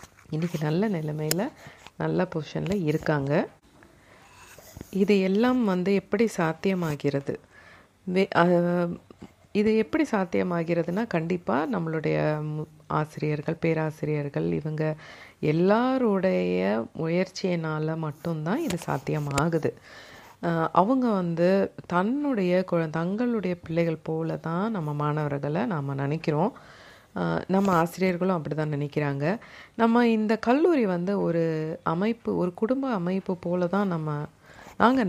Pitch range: 150-190 Hz